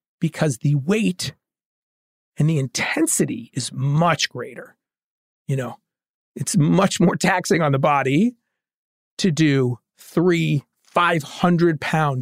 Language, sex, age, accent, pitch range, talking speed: English, male, 40-59, American, 145-180 Hz, 110 wpm